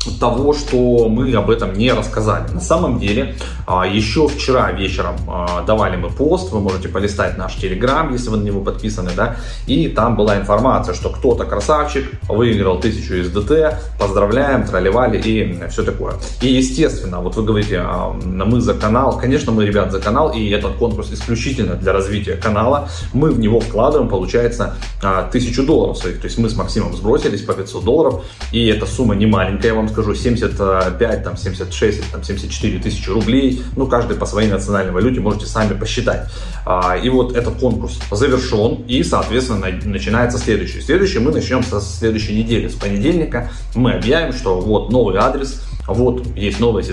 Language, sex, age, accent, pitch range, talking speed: Russian, male, 20-39, native, 95-120 Hz, 165 wpm